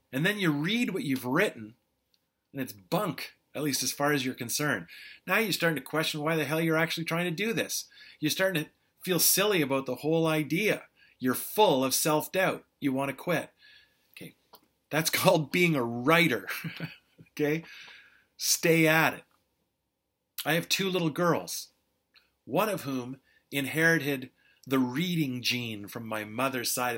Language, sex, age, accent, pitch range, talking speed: English, male, 30-49, American, 130-165 Hz, 165 wpm